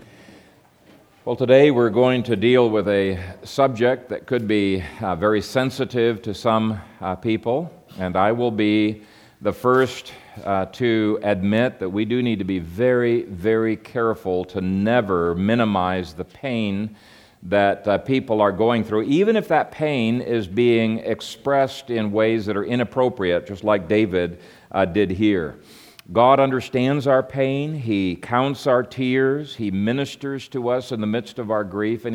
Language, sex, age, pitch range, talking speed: English, male, 50-69, 105-125 Hz, 160 wpm